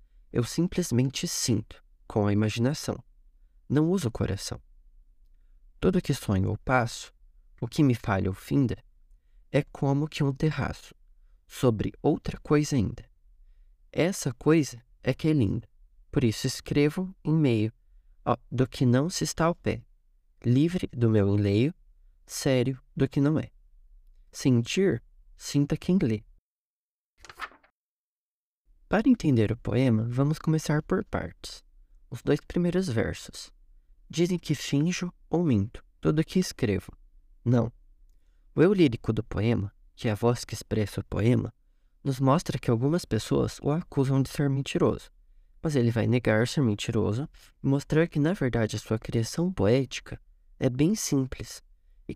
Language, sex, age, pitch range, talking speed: Portuguese, male, 20-39, 100-150 Hz, 145 wpm